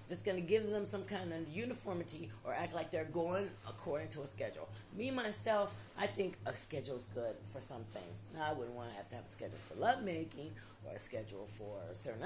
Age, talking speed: 40-59, 210 wpm